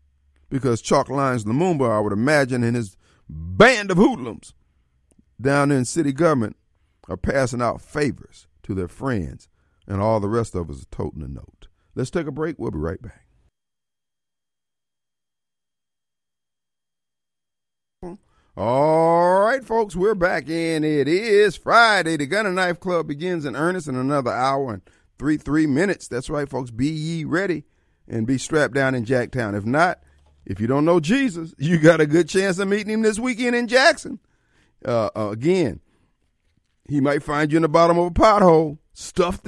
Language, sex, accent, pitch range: Japanese, male, American, 95-160 Hz